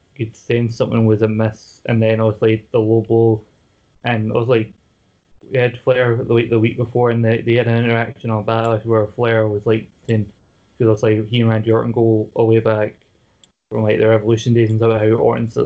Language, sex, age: English, male, 20-39